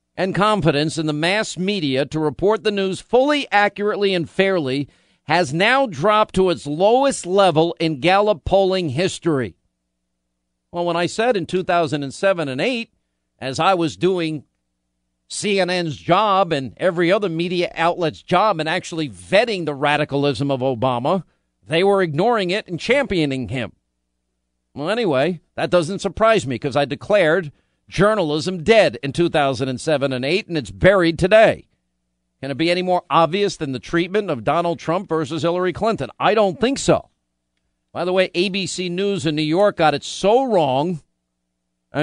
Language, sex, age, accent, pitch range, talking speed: English, male, 50-69, American, 130-185 Hz, 155 wpm